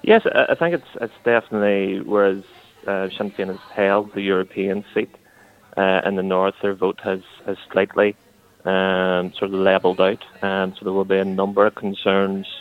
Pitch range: 95-105 Hz